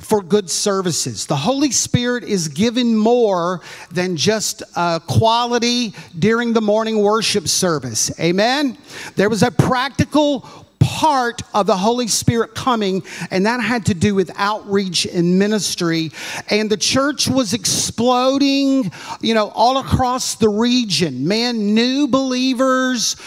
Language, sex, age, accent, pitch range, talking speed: English, male, 50-69, American, 185-245 Hz, 135 wpm